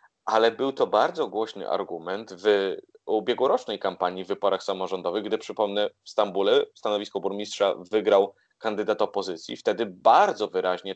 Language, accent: Polish, native